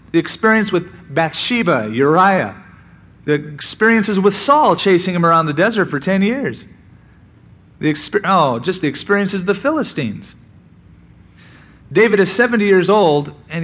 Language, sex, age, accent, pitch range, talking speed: English, male, 40-59, American, 140-195 Hz, 135 wpm